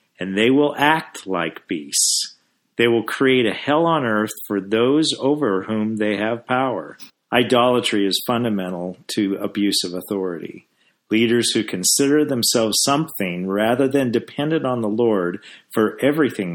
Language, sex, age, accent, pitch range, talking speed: English, male, 50-69, American, 90-120 Hz, 145 wpm